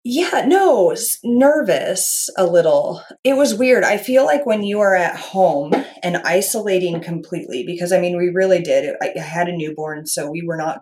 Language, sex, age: English, female, 30-49